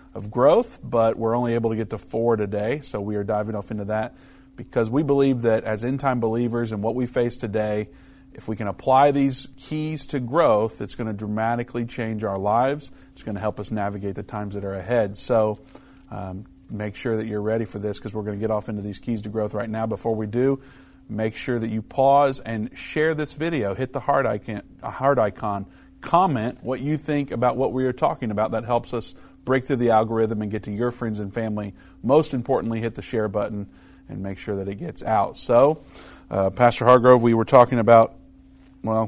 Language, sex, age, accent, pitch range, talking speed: English, male, 50-69, American, 105-130 Hz, 215 wpm